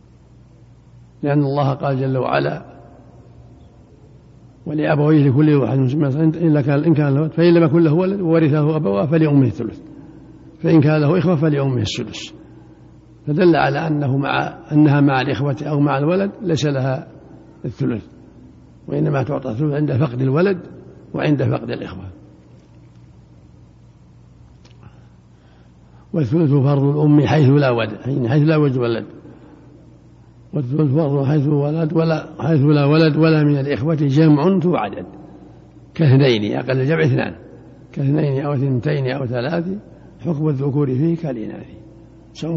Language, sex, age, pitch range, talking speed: Arabic, male, 60-79, 130-160 Hz, 120 wpm